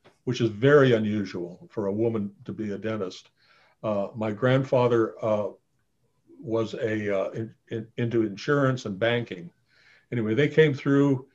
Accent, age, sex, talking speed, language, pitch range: American, 60-79, male, 150 wpm, English, 110-130 Hz